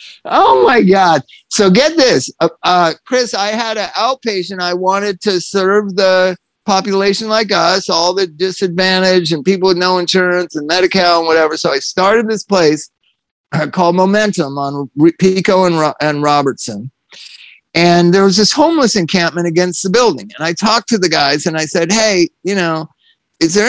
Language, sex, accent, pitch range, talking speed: English, male, American, 155-195 Hz, 175 wpm